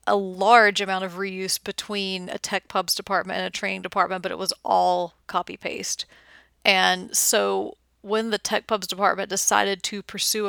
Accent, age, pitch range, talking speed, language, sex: American, 30-49, 180-195 Hz, 170 wpm, English, female